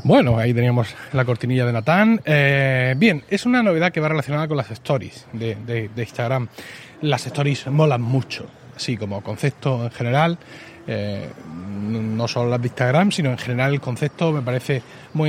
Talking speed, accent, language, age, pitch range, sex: 175 wpm, Spanish, Spanish, 30-49, 125-155 Hz, male